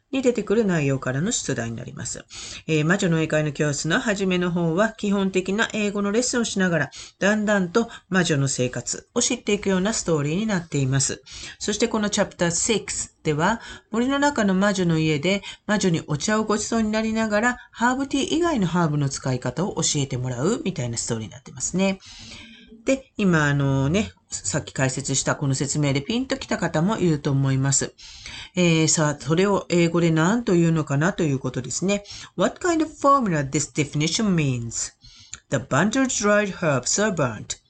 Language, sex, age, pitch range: Japanese, female, 40-59, 145-215 Hz